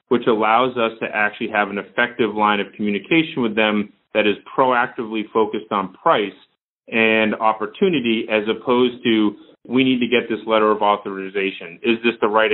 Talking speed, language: 170 wpm, English